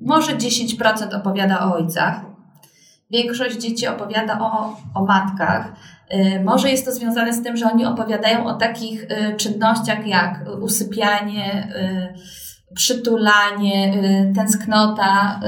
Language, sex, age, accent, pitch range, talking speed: Polish, female, 20-39, native, 200-235 Hz, 105 wpm